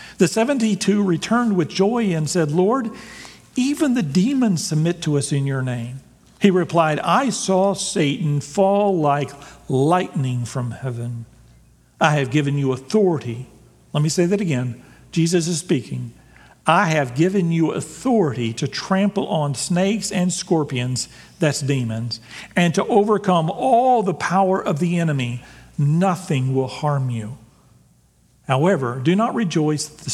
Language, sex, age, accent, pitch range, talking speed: English, male, 50-69, American, 140-200 Hz, 145 wpm